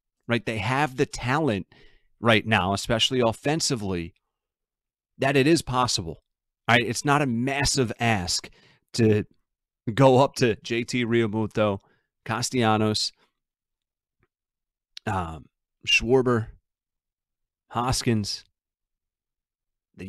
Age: 30-49